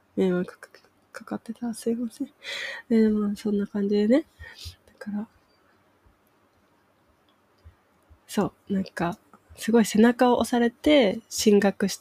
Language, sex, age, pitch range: Japanese, female, 20-39, 175-220 Hz